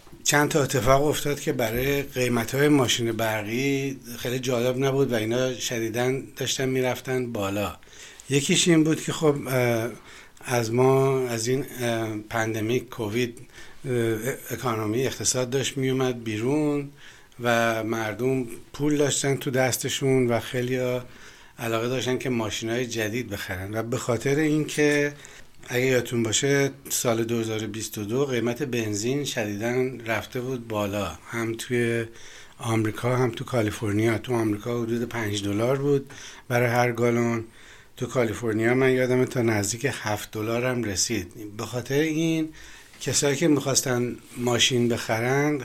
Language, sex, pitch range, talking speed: Persian, male, 115-135 Hz, 125 wpm